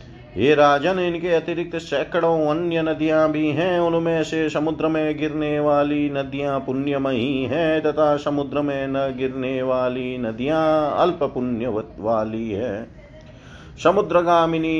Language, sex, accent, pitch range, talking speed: Hindi, male, native, 125-155 Hz, 120 wpm